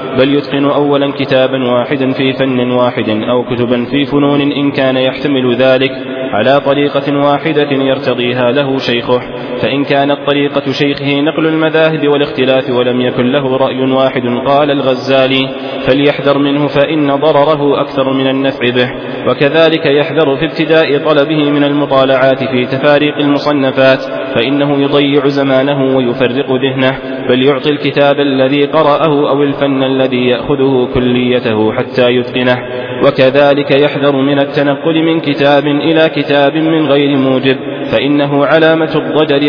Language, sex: Arabic, male